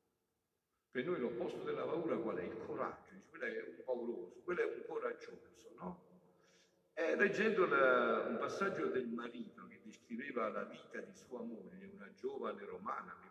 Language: Italian